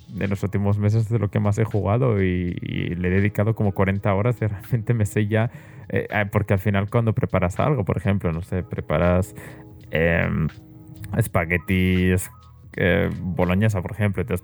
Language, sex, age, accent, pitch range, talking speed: Spanish, male, 20-39, Spanish, 95-110 Hz, 180 wpm